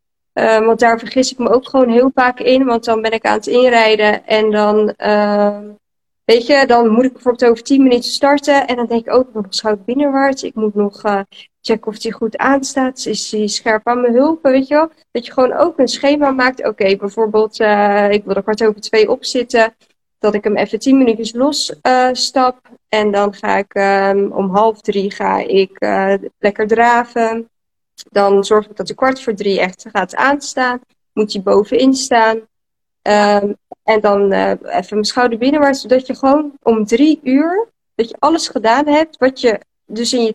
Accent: Dutch